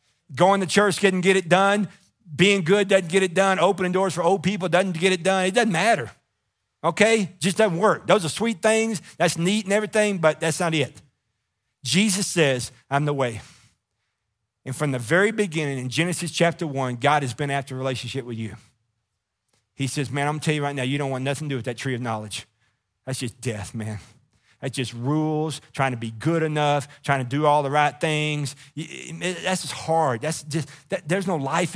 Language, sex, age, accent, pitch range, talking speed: English, male, 40-59, American, 125-165 Hz, 210 wpm